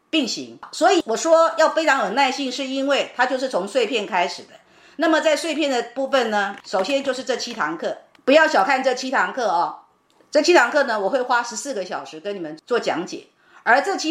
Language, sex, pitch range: Chinese, female, 235-310 Hz